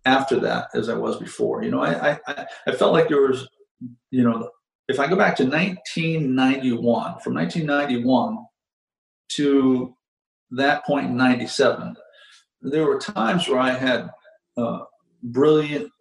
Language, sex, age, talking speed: English, male, 50-69, 140 wpm